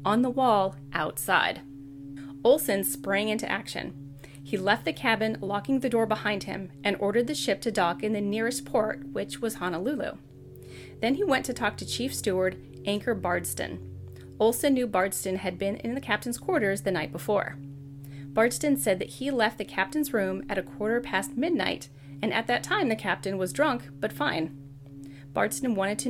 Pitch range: 150-230 Hz